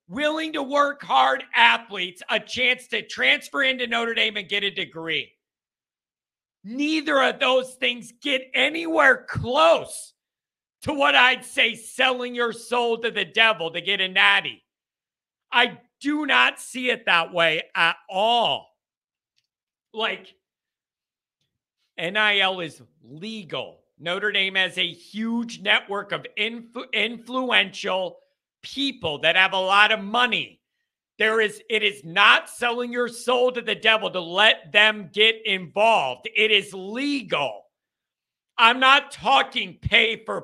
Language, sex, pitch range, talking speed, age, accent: English, male, 205-265 Hz, 130 wpm, 50-69, American